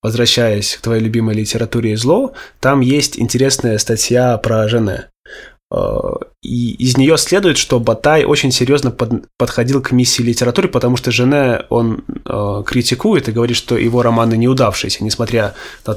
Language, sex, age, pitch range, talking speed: Russian, male, 20-39, 110-130 Hz, 145 wpm